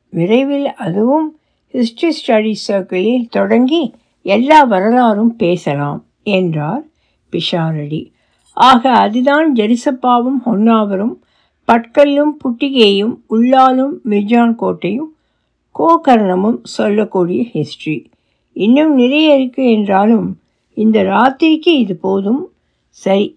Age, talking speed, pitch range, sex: 60-79, 80 wpm, 200-265 Hz, female